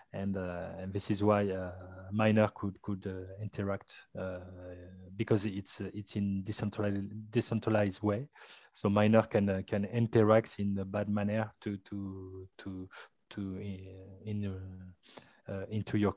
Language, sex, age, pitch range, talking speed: English, male, 30-49, 95-110 Hz, 145 wpm